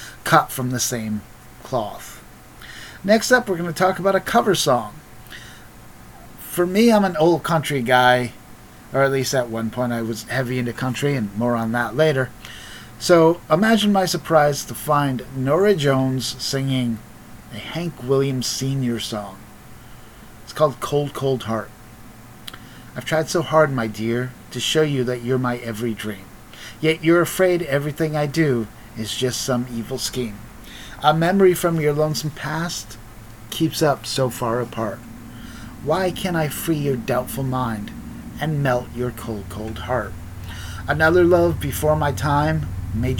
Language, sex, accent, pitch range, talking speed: English, male, American, 115-155 Hz, 155 wpm